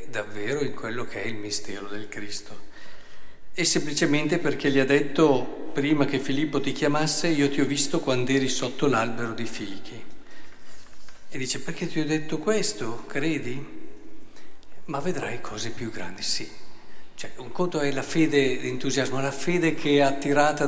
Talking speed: 165 wpm